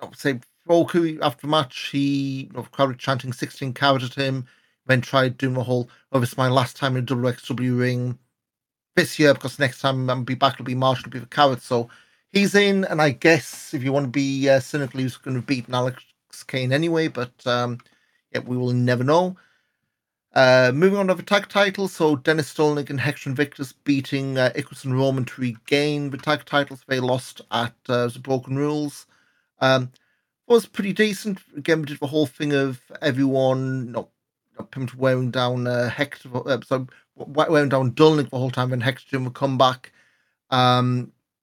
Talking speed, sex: 200 wpm, male